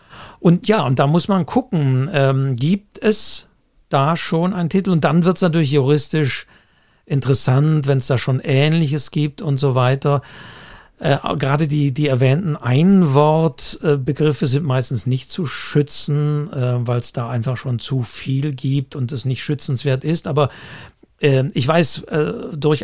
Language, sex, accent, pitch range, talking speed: German, male, German, 130-155 Hz, 150 wpm